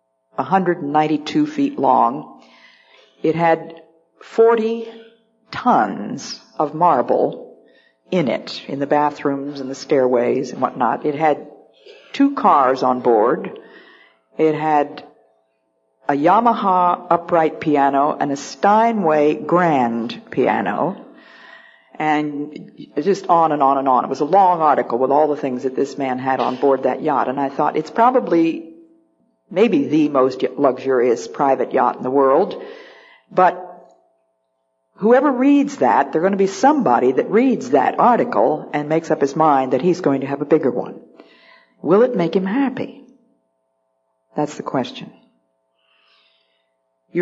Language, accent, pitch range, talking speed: English, American, 140-195 Hz, 140 wpm